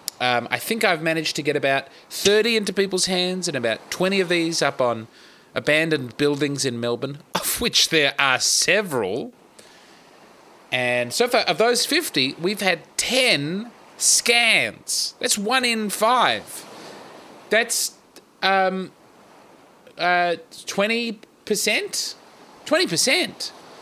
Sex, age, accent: male, 30-49, Australian